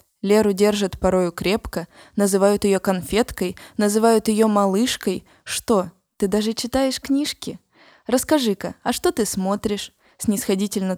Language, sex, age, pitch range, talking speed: Russian, female, 20-39, 195-235 Hz, 115 wpm